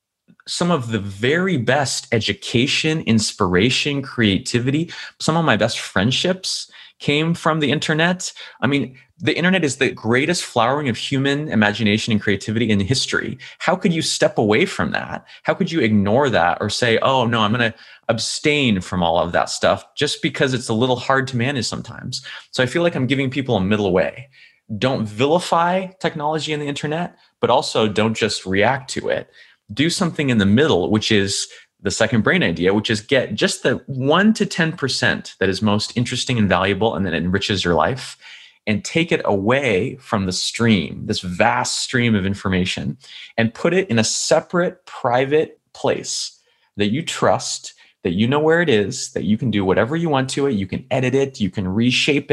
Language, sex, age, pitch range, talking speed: English, male, 20-39, 110-150 Hz, 185 wpm